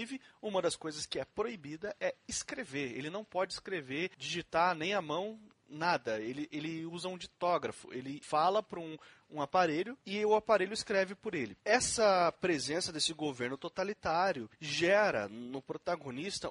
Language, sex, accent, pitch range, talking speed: Portuguese, male, Brazilian, 155-210 Hz, 155 wpm